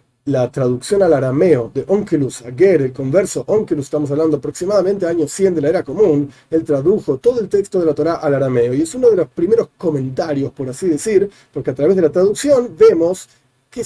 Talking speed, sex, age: 210 wpm, male, 40-59